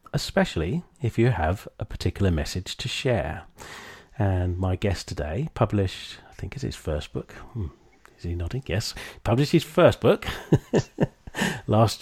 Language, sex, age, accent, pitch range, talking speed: English, male, 40-59, British, 90-125 Hz, 145 wpm